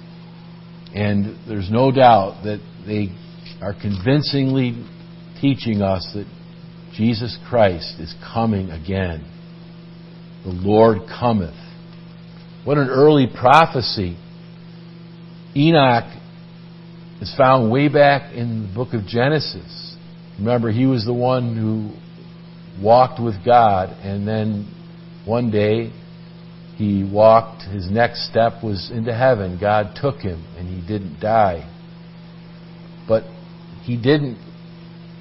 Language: English